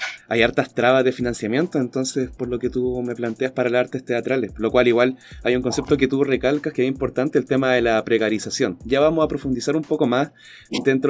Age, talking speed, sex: 20-39, 220 wpm, male